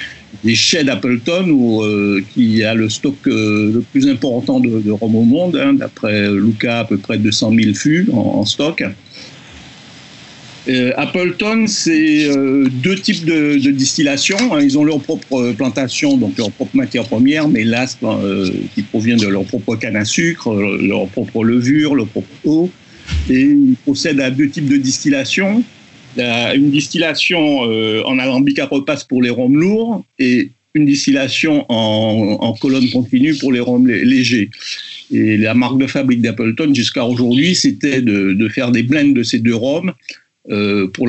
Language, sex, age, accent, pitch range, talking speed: French, male, 60-79, French, 115-170 Hz, 170 wpm